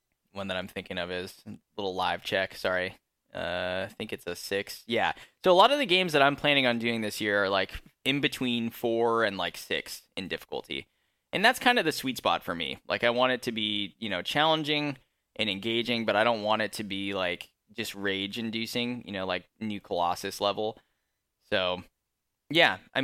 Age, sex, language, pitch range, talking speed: 10-29, male, English, 100-120 Hz, 210 wpm